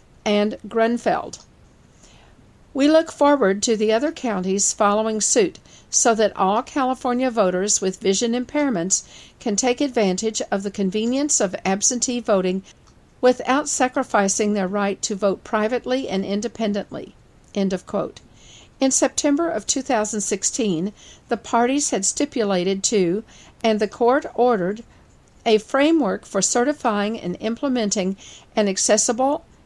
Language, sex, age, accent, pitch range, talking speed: English, female, 50-69, American, 200-255 Hz, 125 wpm